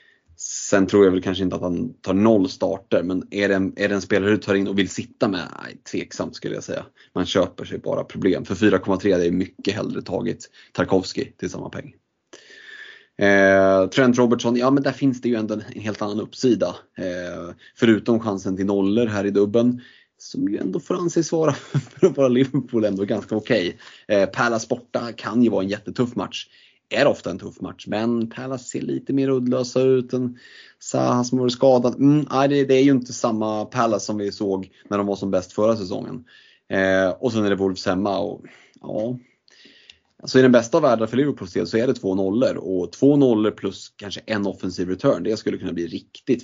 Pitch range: 95-125 Hz